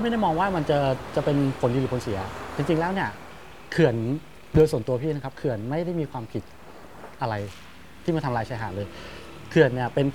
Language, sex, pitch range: Thai, male, 115-150 Hz